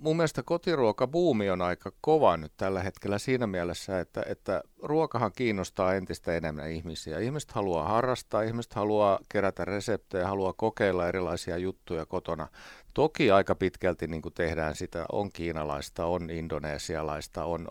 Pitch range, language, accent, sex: 90-115 Hz, Finnish, native, male